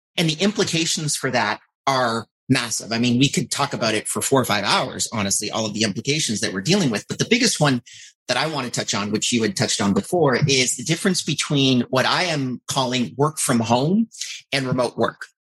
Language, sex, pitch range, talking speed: English, male, 120-160 Hz, 225 wpm